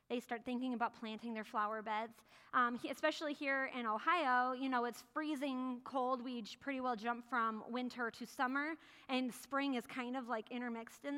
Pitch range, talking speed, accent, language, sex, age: 245-300 Hz, 180 wpm, American, English, female, 20-39